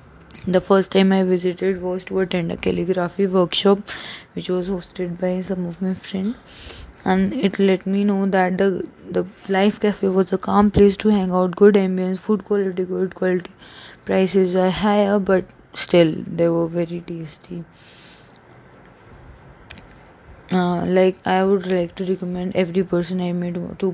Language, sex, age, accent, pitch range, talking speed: English, female, 20-39, Indian, 180-195 Hz, 160 wpm